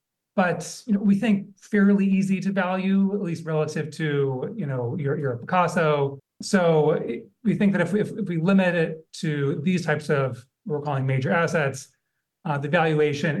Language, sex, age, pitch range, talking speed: English, male, 30-49, 150-195 Hz, 150 wpm